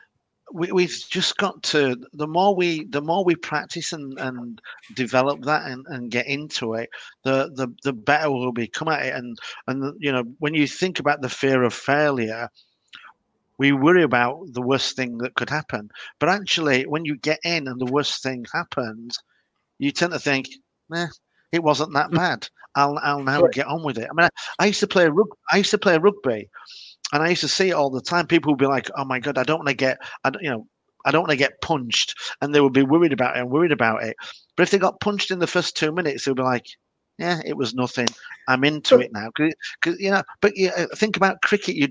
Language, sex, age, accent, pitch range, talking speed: English, male, 50-69, British, 130-175 Hz, 235 wpm